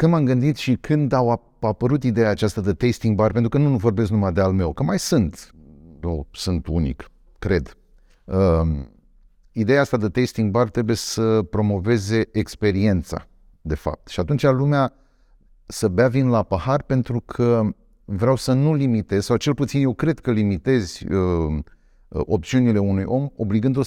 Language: Romanian